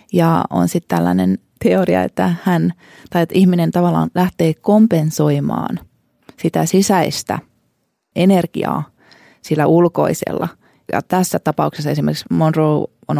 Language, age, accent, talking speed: Finnish, 20-39, native, 110 wpm